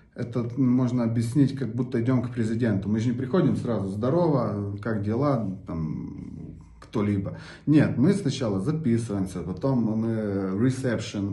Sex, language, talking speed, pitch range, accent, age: male, Russian, 130 wpm, 105-130 Hz, native, 20-39